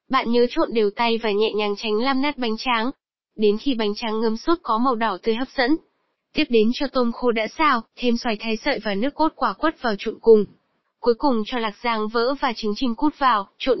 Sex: female